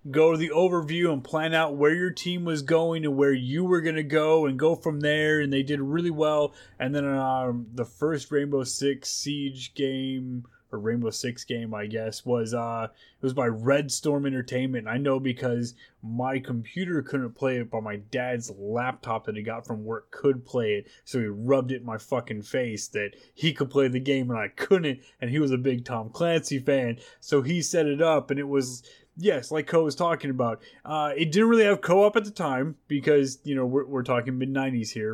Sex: male